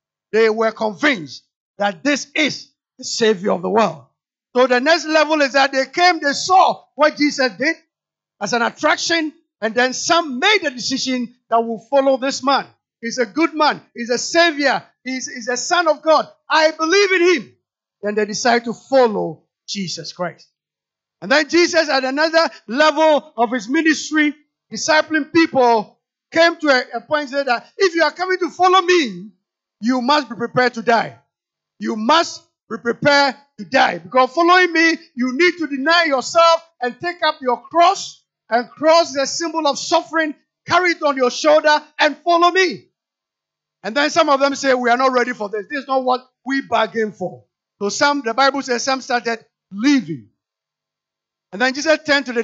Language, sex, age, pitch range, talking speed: English, male, 50-69, 235-310 Hz, 180 wpm